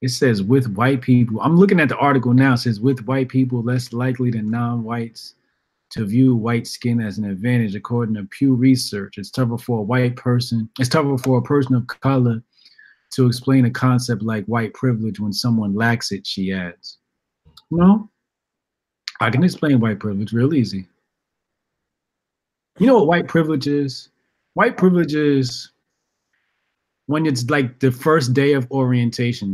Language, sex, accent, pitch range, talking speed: English, male, American, 120-175 Hz, 165 wpm